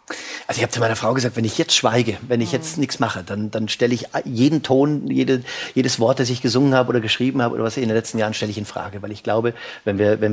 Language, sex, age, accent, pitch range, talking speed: German, male, 30-49, German, 115-140 Hz, 280 wpm